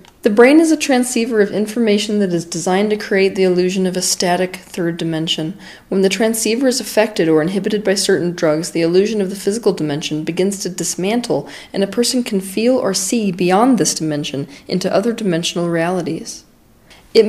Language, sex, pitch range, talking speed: English, female, 170-220 Hz, 185 wpm